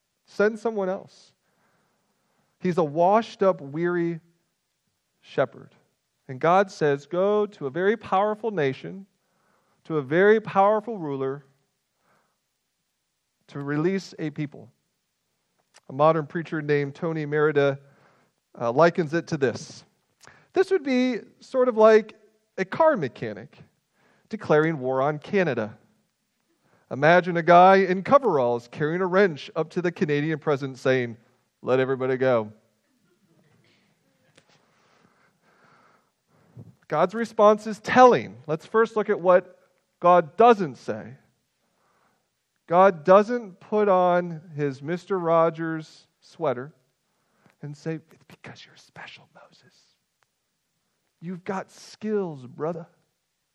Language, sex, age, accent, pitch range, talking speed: English, male, 40-59, American, 150-200 Hz, 110 wpm